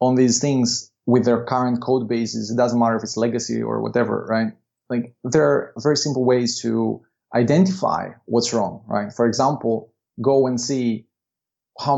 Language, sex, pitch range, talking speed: English, male, 115-130 Hz, 170 wpm